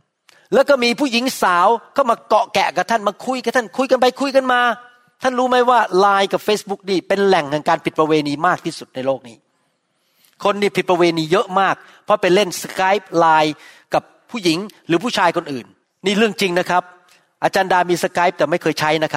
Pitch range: 175-245 Hz